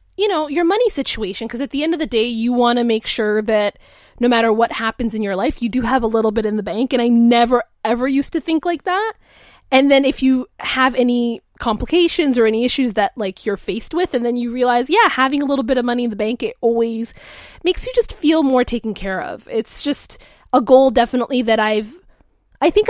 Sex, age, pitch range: female, 20-39, 225-295 Hz